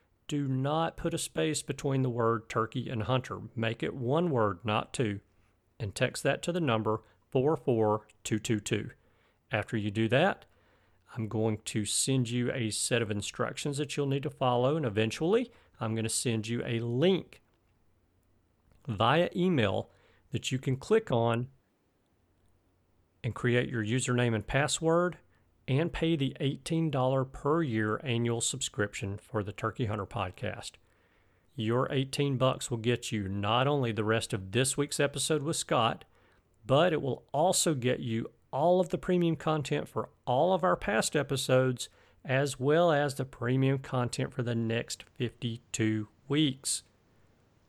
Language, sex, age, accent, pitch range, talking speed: English, male, 40-59, American, 105-135 Hz, 150 wpm